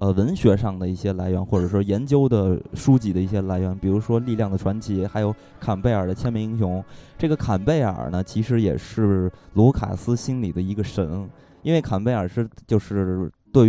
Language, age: Chinese, 20-39